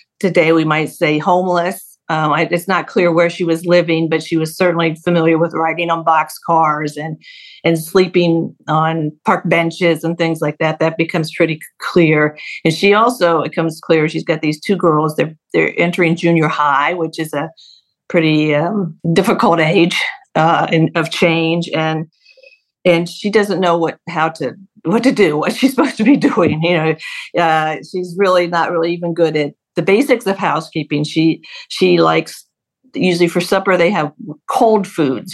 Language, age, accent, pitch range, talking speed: English, 50-69, American, 160-185 Hz, 180 wpm